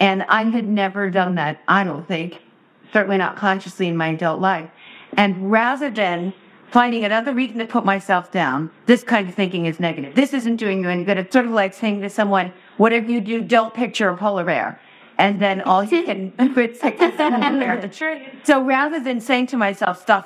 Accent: American